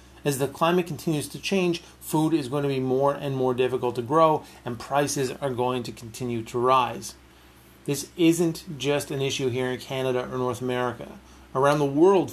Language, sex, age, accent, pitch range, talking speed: English, male, 40-59, American, 125-150 Hz, 190 wpm